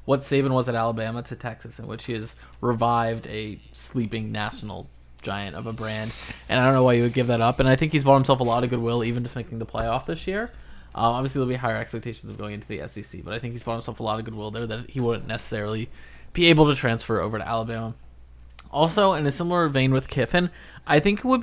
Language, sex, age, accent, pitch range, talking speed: English, male, 20-39, American, 115-140 Hz, 250 wpm